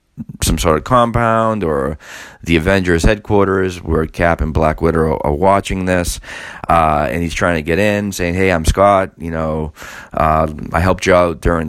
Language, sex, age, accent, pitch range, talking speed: English, male, 30-49, American, 85-105 Hz, 180 wpm